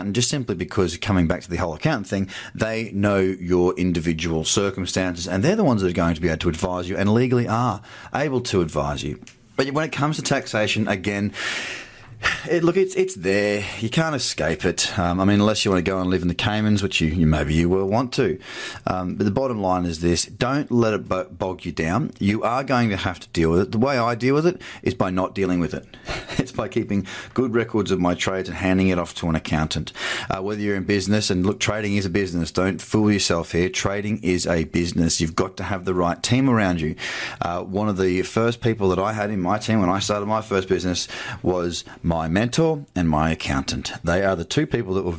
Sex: male